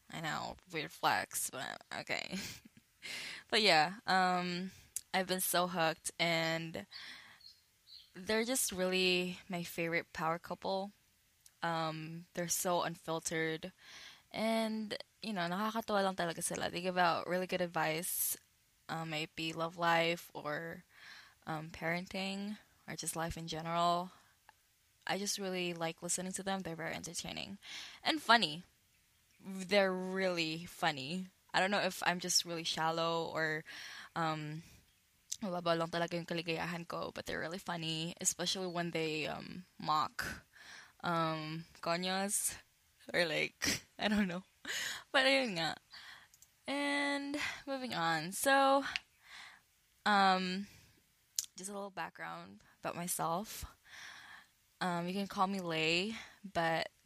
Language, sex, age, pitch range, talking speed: Filipino, female, 10-29, 165-190 Hz, 115 wpm